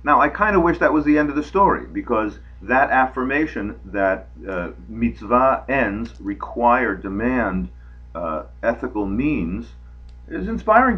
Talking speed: 140 wpm